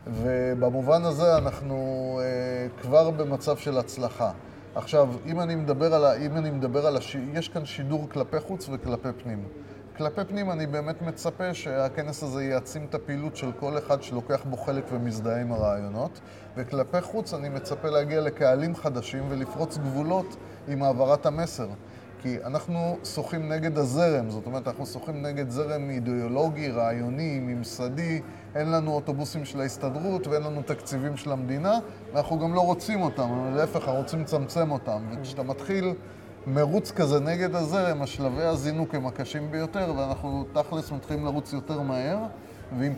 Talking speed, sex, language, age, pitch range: 150 wpm, male, Hebrew, 30-49, 130-155 Hz